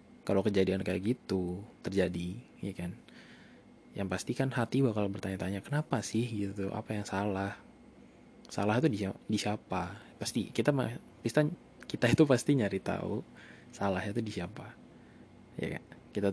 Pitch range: 100-120 Hz